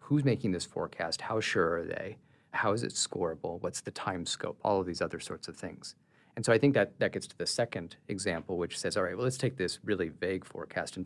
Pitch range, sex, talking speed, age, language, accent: 90-130 Hz, male, 250 wpm, 40-59, English, American